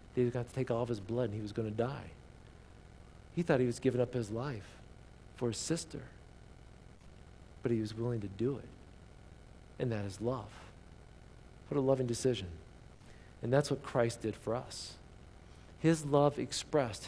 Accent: American